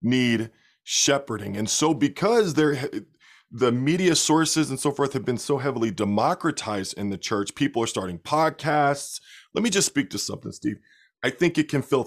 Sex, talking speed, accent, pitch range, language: male, 180 wpm, American, 115-155 Hz, English